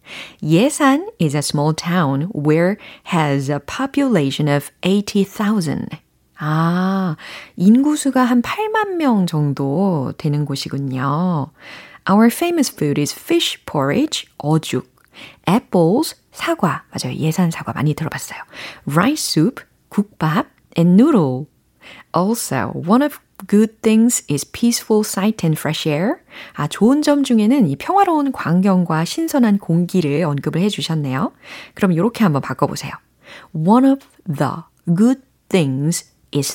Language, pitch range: Korean, 150-235 Hz